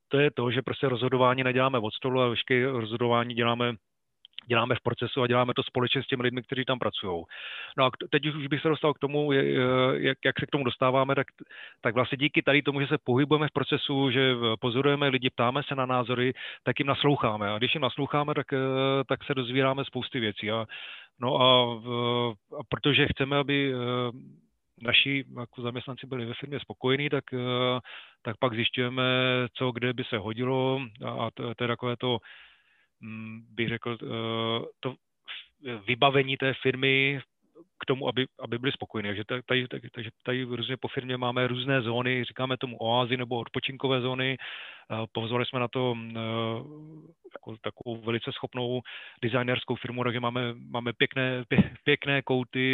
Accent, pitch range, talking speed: native, 120-135 Hz, 165 wpm